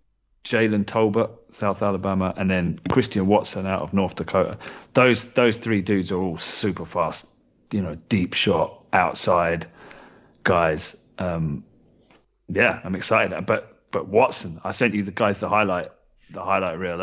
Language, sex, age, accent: English, male, 30-49, British